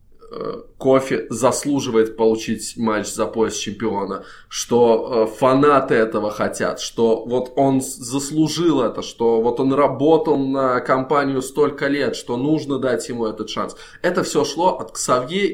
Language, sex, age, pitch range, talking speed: Russian, male, 20-39, 115-165 Hz, 135 wpm